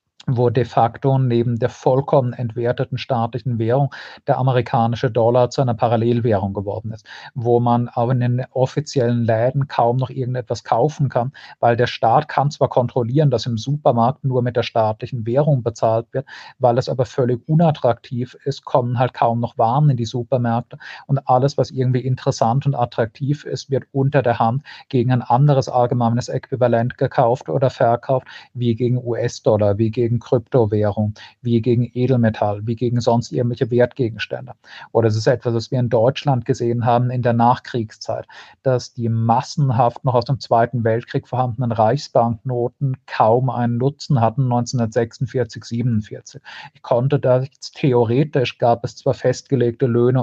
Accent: German